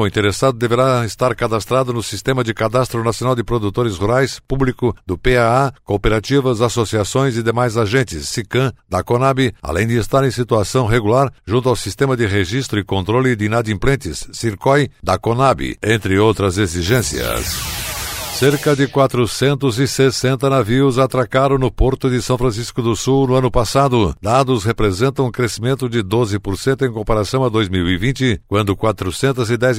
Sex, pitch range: male, 110-130 Hz